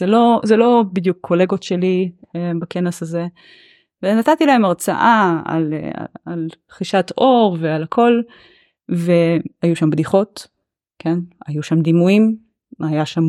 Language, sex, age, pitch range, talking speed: Hebrew, female, 20-39, 170-215 Hz, 130 wpm